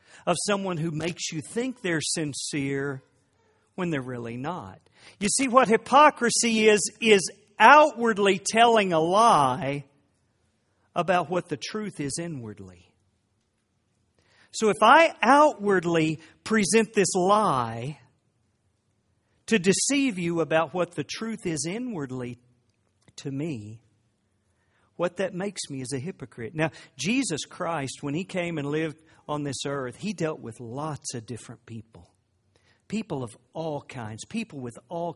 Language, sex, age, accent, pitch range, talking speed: English, male, 50-69, American, 115-190 Hz, 135 wpm